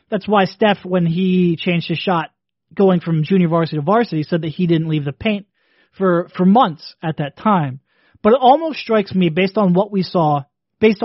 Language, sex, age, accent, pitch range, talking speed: English, male, 30-49, American, 170-210 Hz, 205 wpm